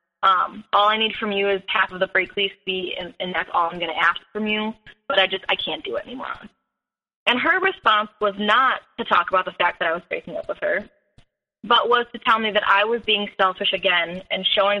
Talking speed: 245 wpm